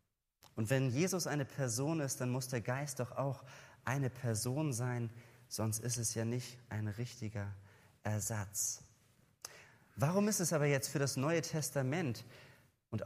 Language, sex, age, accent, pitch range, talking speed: German, male, 30-49, German, 120-150 Hz, 150 wpm